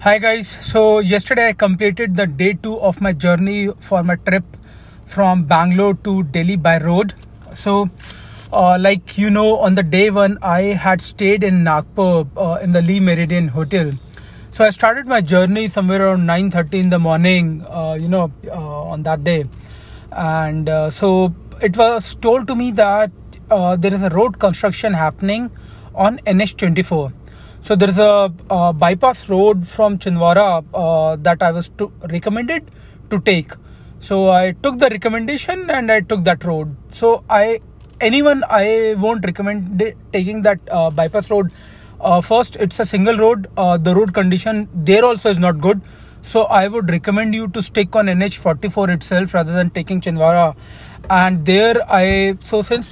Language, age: English, 30-49